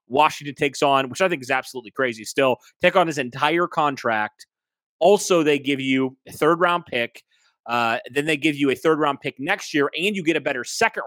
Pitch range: 125-170 Hz